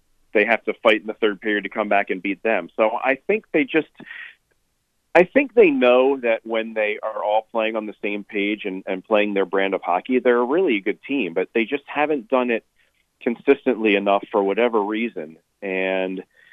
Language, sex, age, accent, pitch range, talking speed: English, male, 40-59, American, 100-130 Hz, 205 wpm